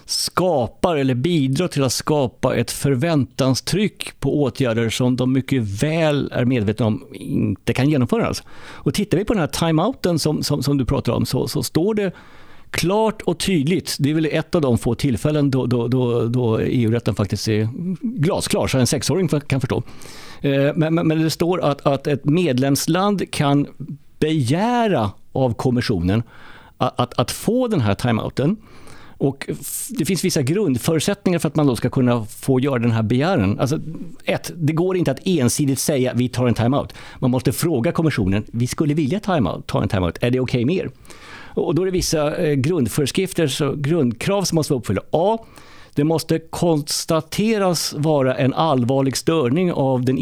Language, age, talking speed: Swedish, 50-69, 175 wpm